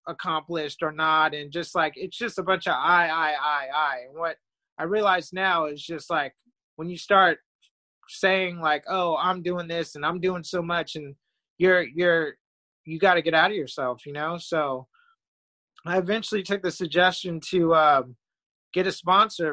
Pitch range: 155-180 Hz